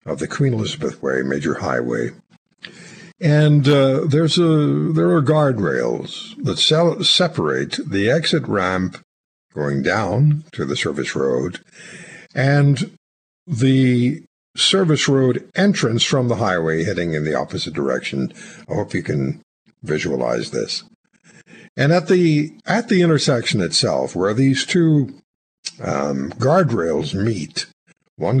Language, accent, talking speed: English, American, 125 wpm